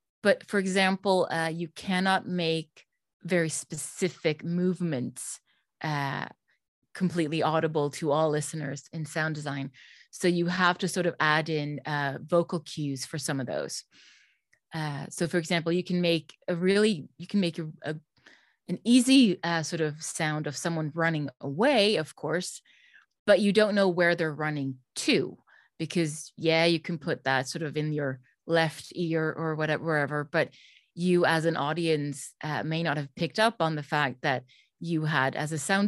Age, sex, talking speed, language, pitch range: 30-49, female, 170 wpm, English, 150-180 Hz